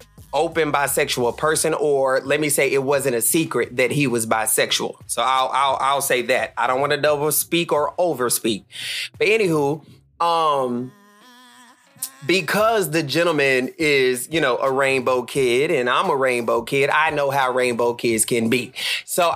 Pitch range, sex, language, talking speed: 125-160 Hz, male, English, 165 wpm